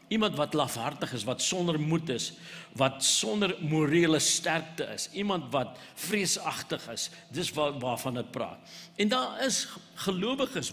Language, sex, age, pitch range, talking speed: English, male, 60-79, 145-190 Hz, 145 wpm